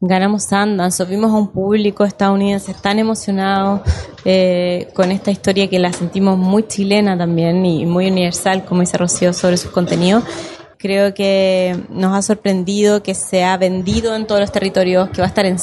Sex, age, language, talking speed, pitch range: female, 20-39, Spanish, 175 wpm, 190-220 Hz